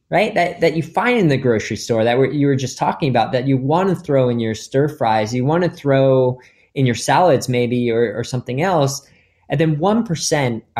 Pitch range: 115-155 Hz